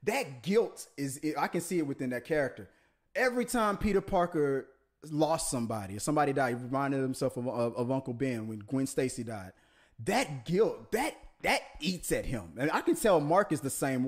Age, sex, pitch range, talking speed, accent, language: 30-49, male, 135-210 Hz, 195 wpm, American, English